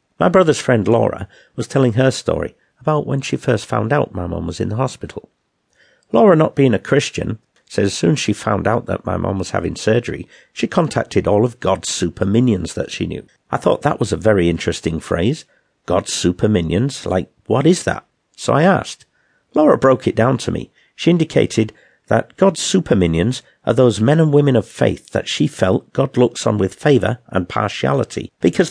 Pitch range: 100-140 Hz